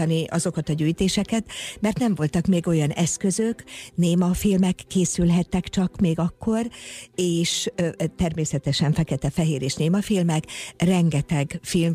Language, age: Hungarian, 60-79